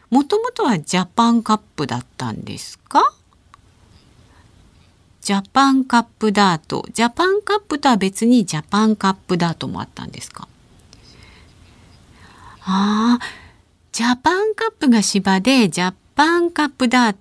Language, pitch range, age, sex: Japanese, 165-265 Hz, 50-69, female